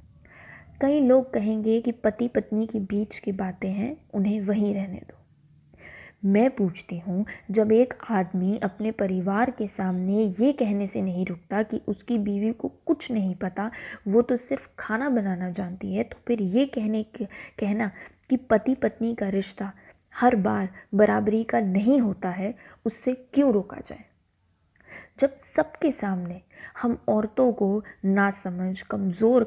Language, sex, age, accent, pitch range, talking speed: Hindi, female, 20-39, native, 195-235 Hz, 150 wpm